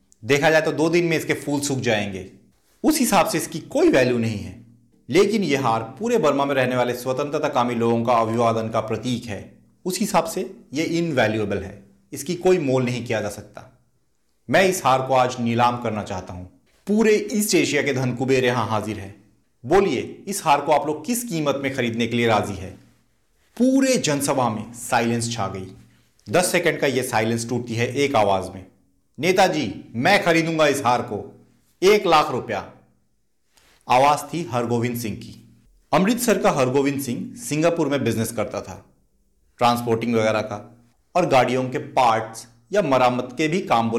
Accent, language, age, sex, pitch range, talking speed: native, Hindi, 30-49, male, 115-155 Hz, 180 wpm